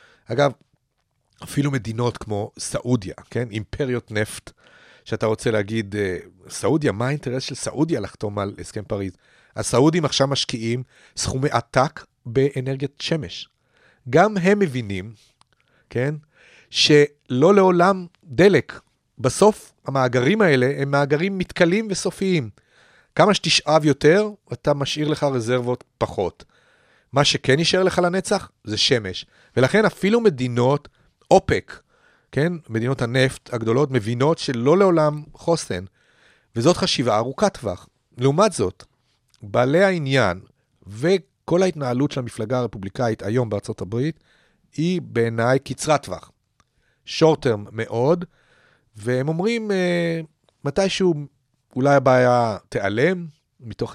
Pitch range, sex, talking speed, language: 115-165 Hz, male, 110 wpm, Hebrew